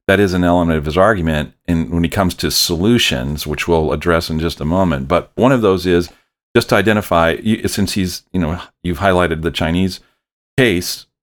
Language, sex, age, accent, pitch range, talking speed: English, male, 40-59, American, 80-95 Hz, 200 wpm